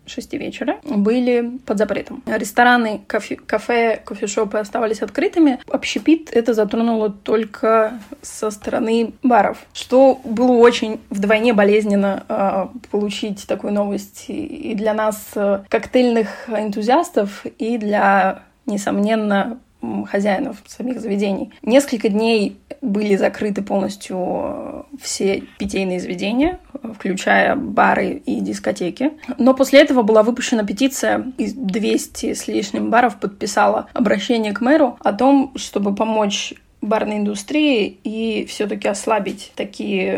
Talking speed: 110 wpm